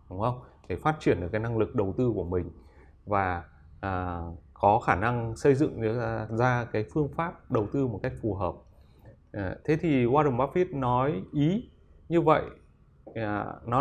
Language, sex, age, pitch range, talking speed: Vietnamese, male, 20-39, 100-135 Hz, 165 wpm